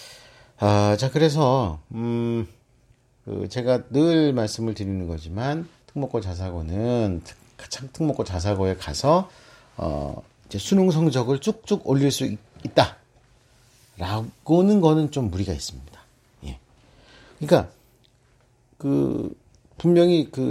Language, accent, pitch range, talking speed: English, Korean, 100-140 Hz, 100 wpm